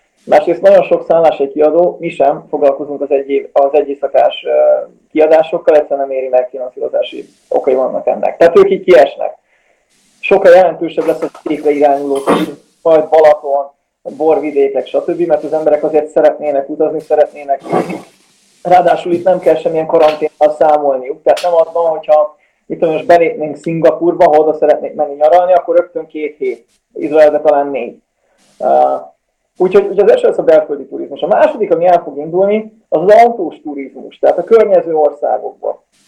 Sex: male